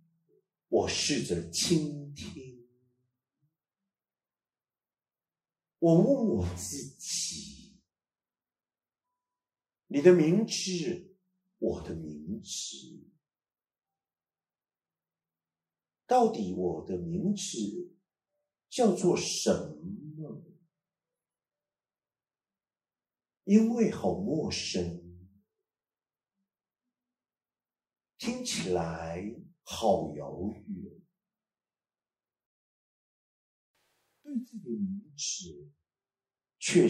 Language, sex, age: Chinese, male, 50-69